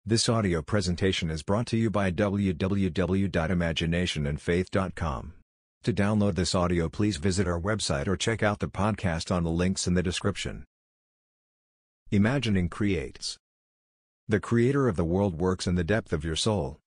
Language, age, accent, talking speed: English, 50-69, American, 150 wpm